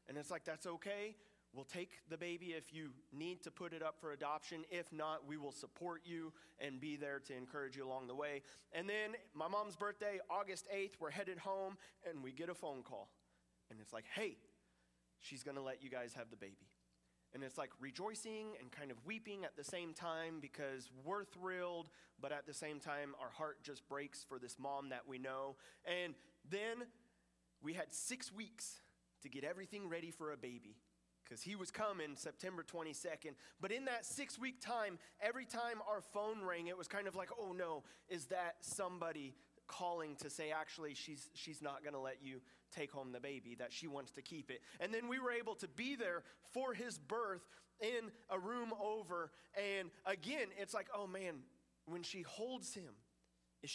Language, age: English, 30-49